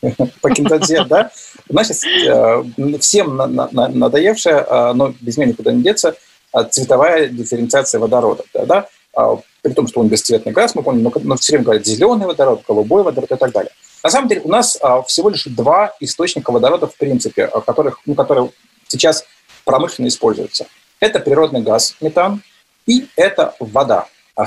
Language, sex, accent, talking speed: Russian, male, native, 150 wpm